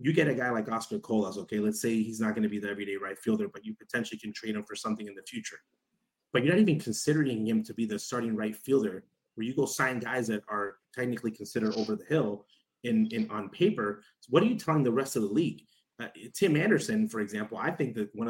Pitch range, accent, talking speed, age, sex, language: 110-160 Hz, American, 255 wpm, 30-49, male, English